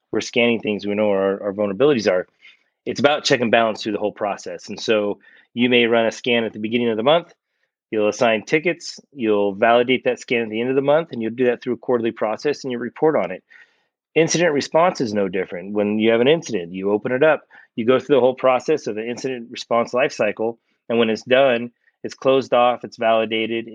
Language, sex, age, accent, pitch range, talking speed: English, male, 30-49, American, 105-120 Hz, 230 wpm